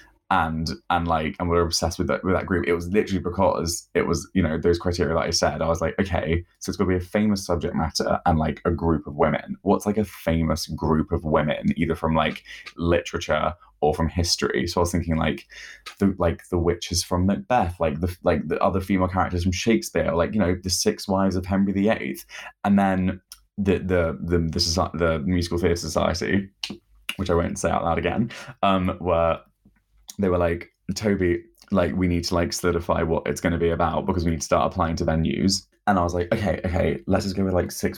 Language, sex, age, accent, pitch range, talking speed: English, male, 20-39, British, 85-95 Hz, 230 wpm